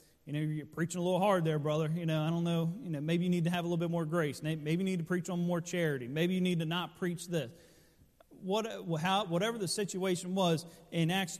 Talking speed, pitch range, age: 260 wpm, 165-195 Hz, 30-49